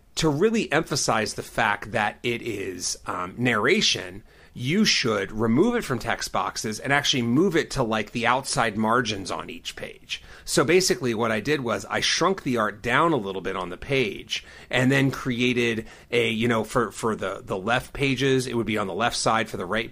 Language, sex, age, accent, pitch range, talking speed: English, male, 30-49, American, 105-135 Hz, 205 wpm